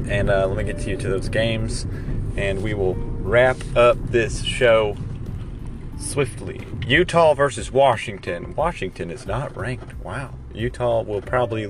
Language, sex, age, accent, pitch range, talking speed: English, male, 30-49, American, 110-130 Hz, 150 wpm